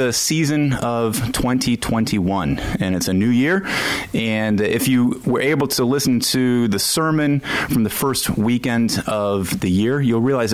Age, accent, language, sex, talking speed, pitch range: 30-49, American, English, male, 160 wpm, 90-120 Hz